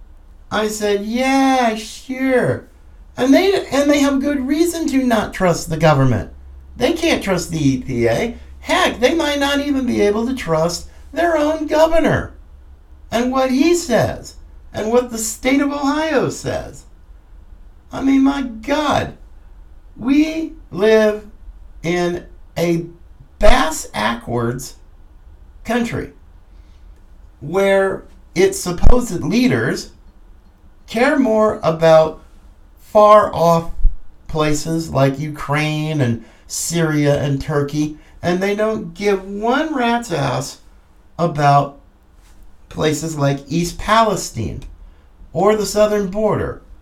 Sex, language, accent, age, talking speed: male, English, American, 50-69, 110 wpm